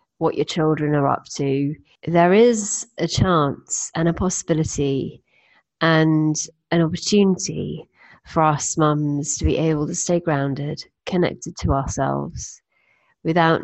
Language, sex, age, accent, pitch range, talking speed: English, female, 30-49, British, 145-175 Hz, 130 wpm